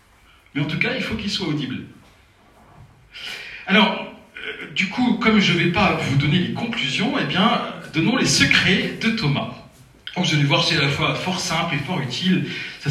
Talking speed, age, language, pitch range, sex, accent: 205 wpm, 40-59, French, 115-150 Hz, male, French